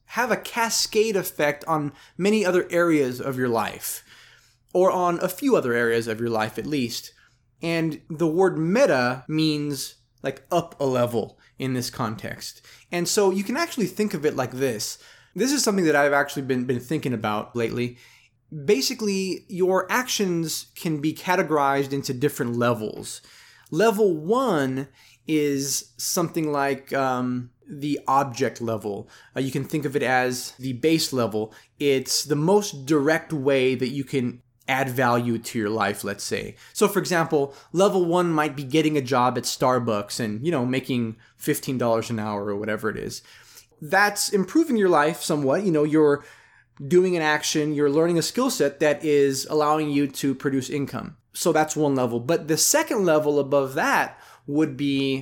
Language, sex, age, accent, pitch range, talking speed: English, male, 20-39, American, 125-165 Hz, 170 wpm